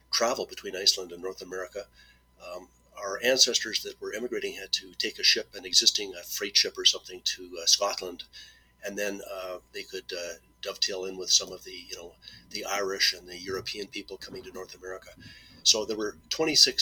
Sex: male